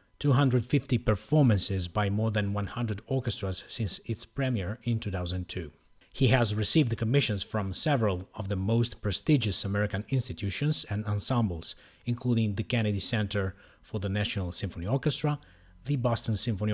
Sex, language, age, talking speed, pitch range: male, English, 30-49, 135 wpm, 100-130 Hz